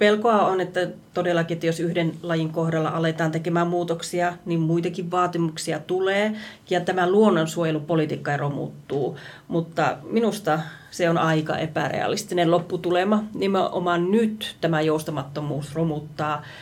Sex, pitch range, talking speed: female, 155-180 Hz, 120 wpm